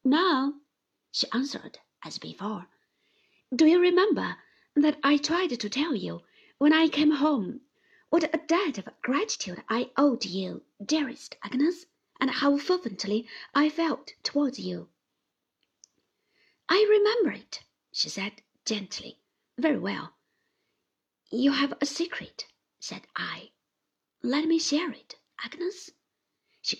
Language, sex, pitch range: Chinese, female, 240-340 Hz